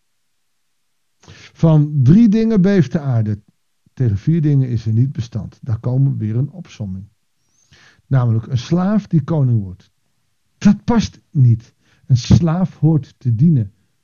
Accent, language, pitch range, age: Dutch, Dutch, 115-160 Hz, 50-69